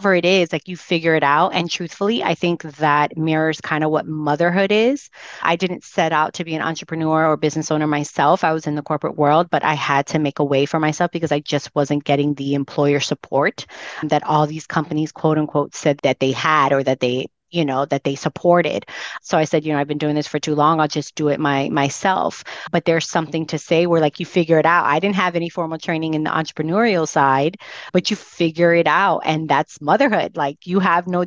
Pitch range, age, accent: 155-180 Hz, 30-49, American